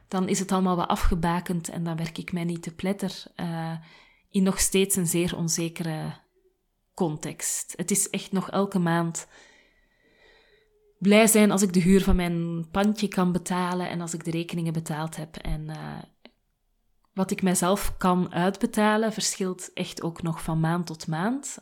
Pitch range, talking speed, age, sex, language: 165-195 Hz, 170 wpm, 30-49, female, Dutch